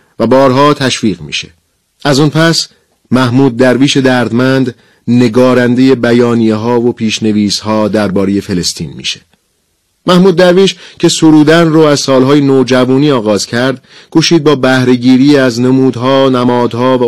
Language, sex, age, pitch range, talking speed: Persian, male, 40-59, 110-135 Hz, 125 wpm